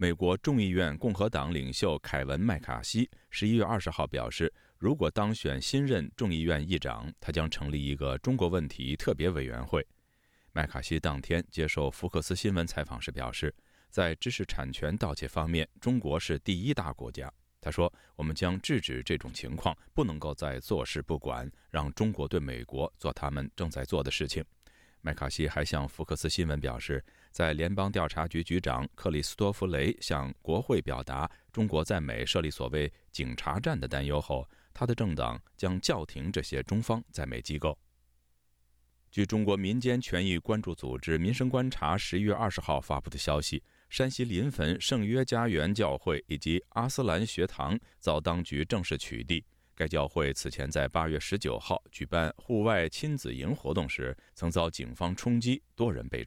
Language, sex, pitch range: Chinese, male, 70-95 Hz